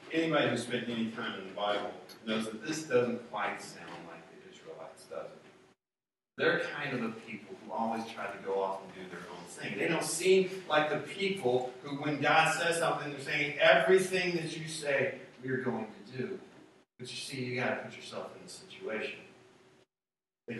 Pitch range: 115-155 Hz